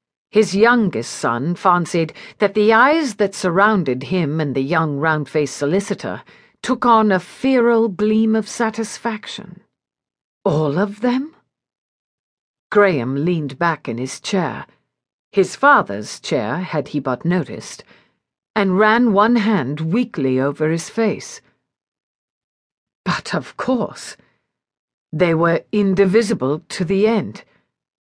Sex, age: female, 50-69